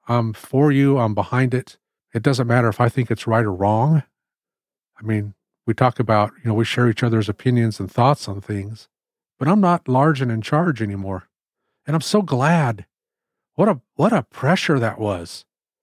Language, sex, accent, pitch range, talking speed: English, male, American, 115-150 Hz, 195 wpm